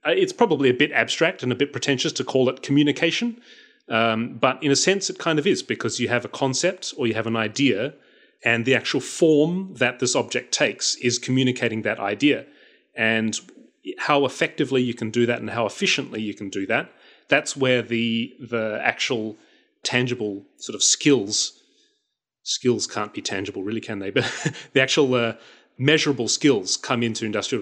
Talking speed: 180 wpm